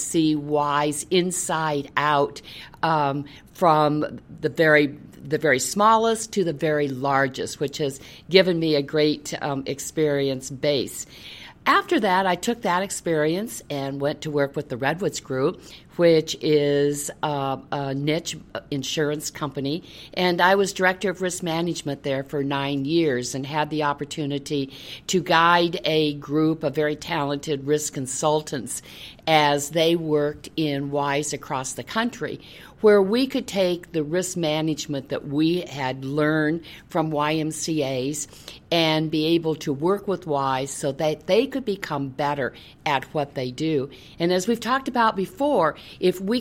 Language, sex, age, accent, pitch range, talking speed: English, female, 50-69, American, 145-170 Hz, 150 wpm